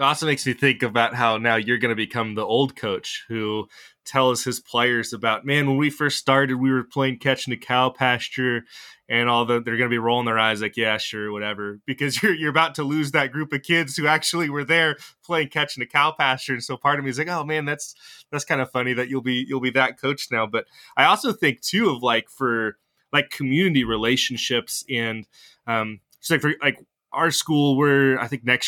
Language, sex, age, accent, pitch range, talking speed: English, male, 20-39, American, 115-140 Hz, 235 wpm